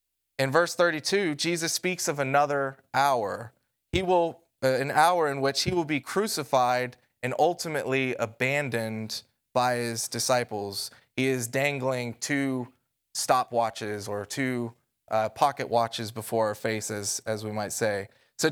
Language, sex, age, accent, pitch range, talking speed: English, male, 20-39, American, 115-145 Hz, 140 wpm